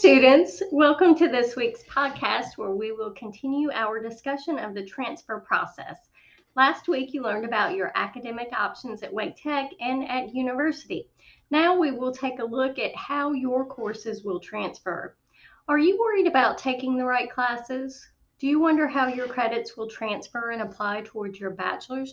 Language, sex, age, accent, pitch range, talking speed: English, female, 30-49, American, 215-275 Hz, 170 wpm